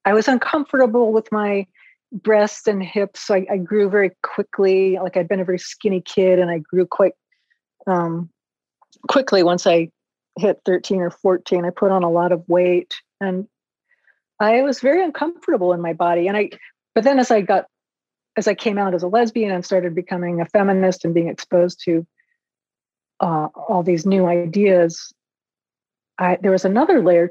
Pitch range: 180-215 Hz